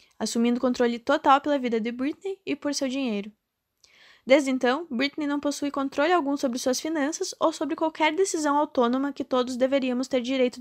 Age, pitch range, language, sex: 10-29, 235-285 Hz, Portuguese, female